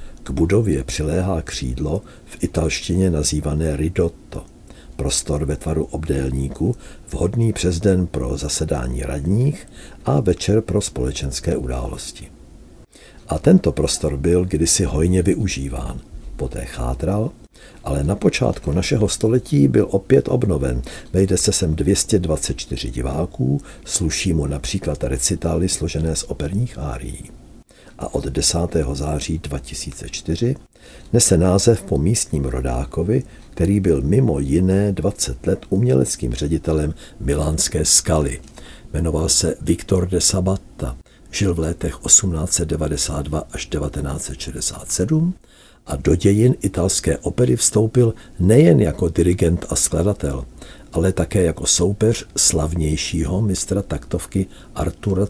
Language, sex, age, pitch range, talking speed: Czech, male, 60-79, 75-95 Hz, 110 wpm